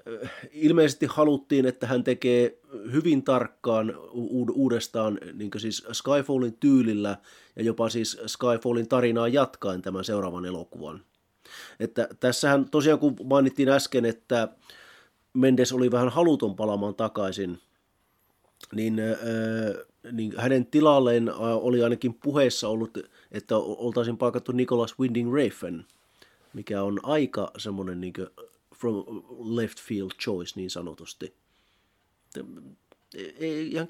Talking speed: 105 wpm